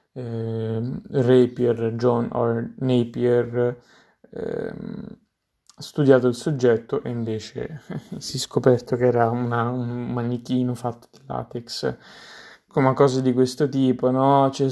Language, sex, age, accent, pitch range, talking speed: Italian, male, 20-39, native, 115-130 Hz, 120 wpm